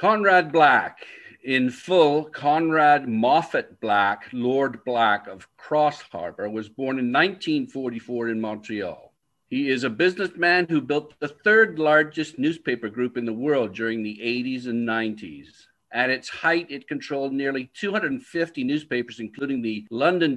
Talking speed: 140 wpm